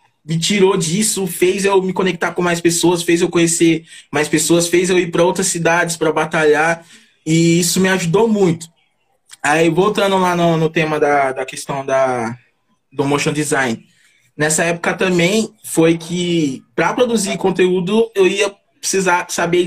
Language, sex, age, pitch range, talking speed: Portuguese, male, 20-39, 150-190 Hz, 160 wpm